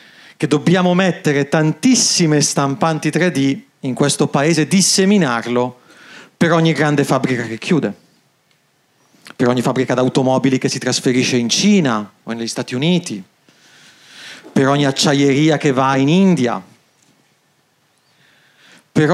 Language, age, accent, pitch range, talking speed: Italian, 40-59, native, 125-180 Hz, 115 wpm